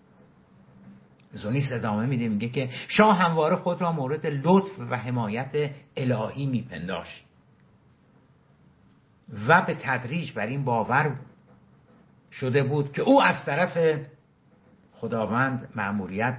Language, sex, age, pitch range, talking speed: Persian, male, 60-79, 105-145 Hz, 105 wpm